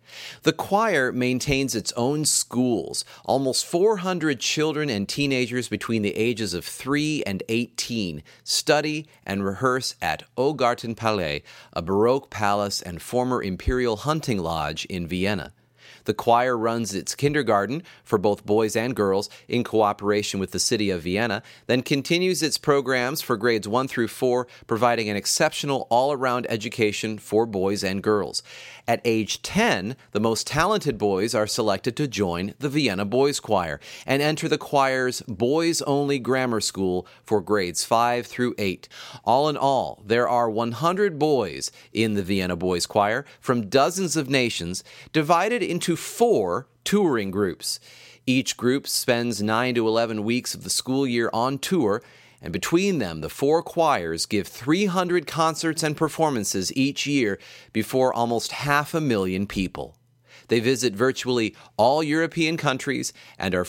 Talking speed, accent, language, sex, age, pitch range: 145 wpm, American, English, male, 30-49, 105-140 Hz